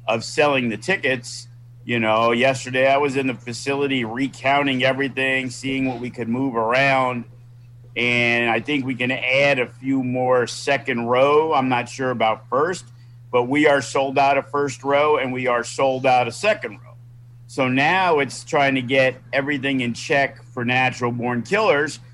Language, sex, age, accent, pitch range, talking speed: English, male, 50-69, American, 120-135 Hz, 175 wpm